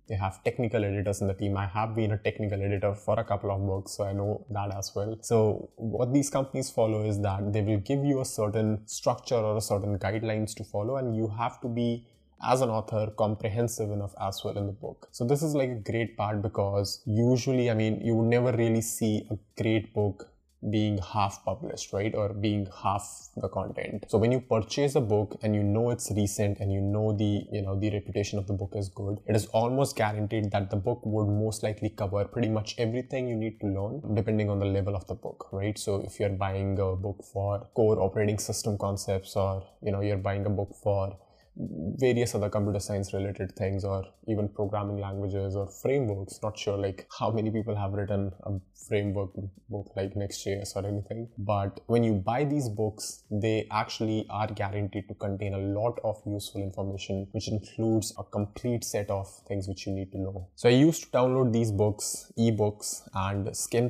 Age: 20-39